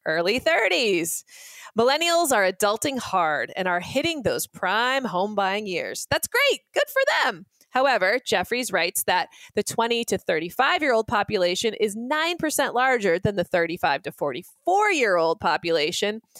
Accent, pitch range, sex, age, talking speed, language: American, 190-270 Hz, female, 20-39, 135 wpm, English